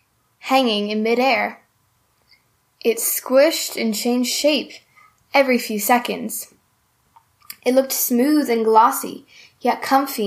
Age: 10-29